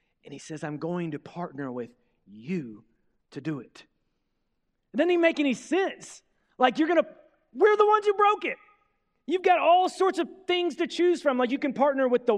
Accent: American